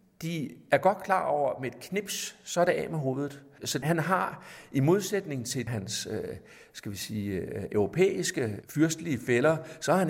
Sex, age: male, 60-79